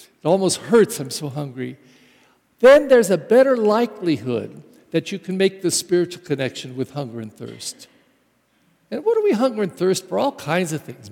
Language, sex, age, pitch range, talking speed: English, male, 60-79, 155-195 Hz, 185 wpm